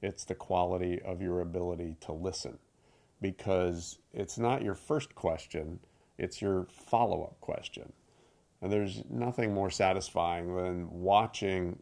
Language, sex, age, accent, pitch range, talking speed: English, male, 40-59, American, 90-100 Hz, 125 wpm